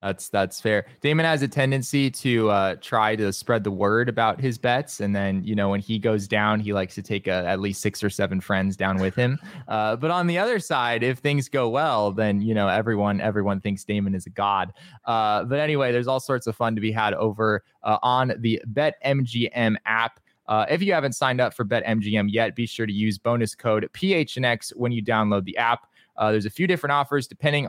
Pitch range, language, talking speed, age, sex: 105-130 Hz, English, 225 wpm, 20-39, male